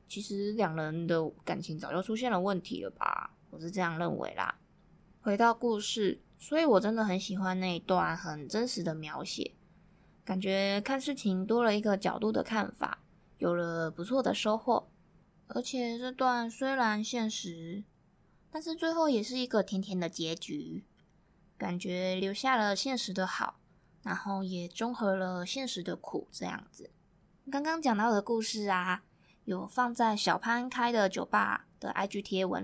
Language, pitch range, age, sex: Chinese, 180-235 Hz, 20-39, female